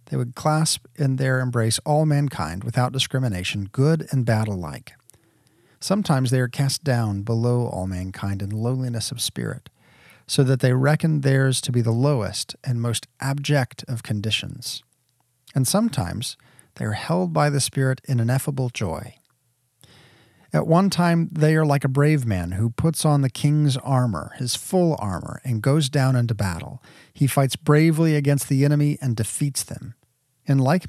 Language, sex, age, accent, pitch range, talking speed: English, male, 40-59, American, 120-145 Hz, 165 wpm